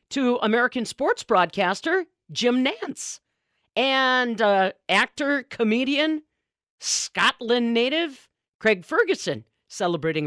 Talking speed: 90 wpm